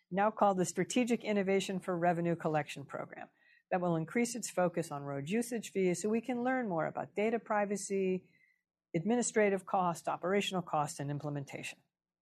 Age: 50-69